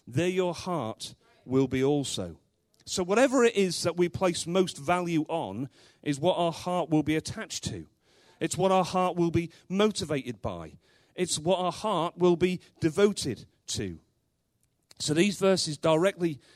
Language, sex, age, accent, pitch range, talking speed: English, male, 40-59, British, 130-180 Hz, 160 wpm